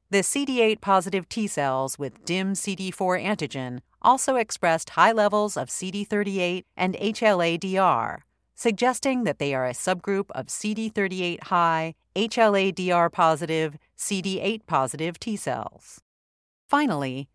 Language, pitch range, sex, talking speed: English, 160-225 Hz, female, 95 wpm